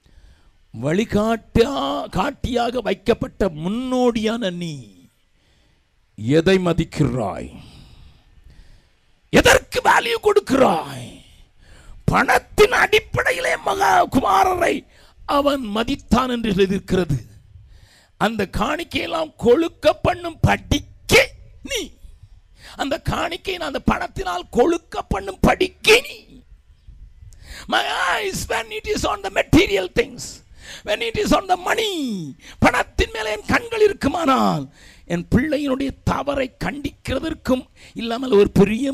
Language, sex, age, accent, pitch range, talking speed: Tamil, male, 50-69, native, 155-250 Hz, 50 wpm